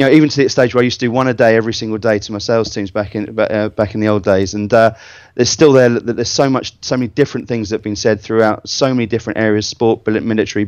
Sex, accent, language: male, British, English